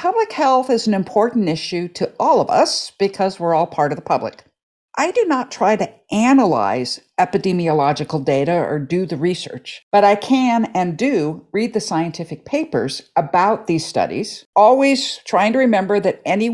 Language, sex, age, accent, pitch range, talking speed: English, female, 50-69, American, 160-230 Hz, 170 wpm